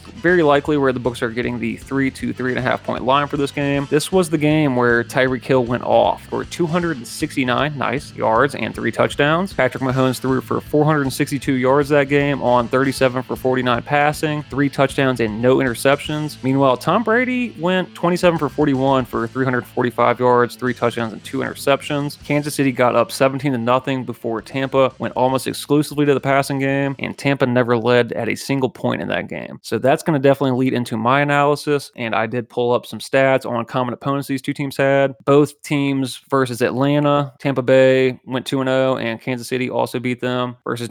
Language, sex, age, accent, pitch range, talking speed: English, male, 30-49, American, 125-145 Hz, 200 wpm